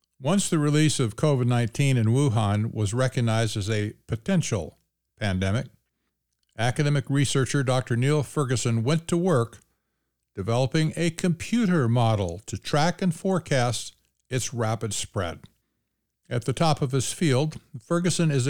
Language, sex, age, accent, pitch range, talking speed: English, male, 60-79, American, 110-150 Hz, 130 wpm